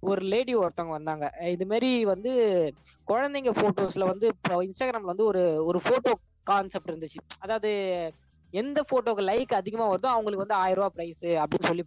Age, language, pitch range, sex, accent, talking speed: 20-39, Tamil, 170-225 Hz, female, native, 145 wpm